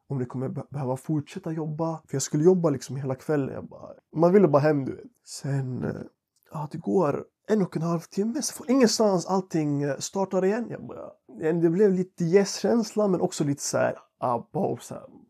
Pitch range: 140-190 Hz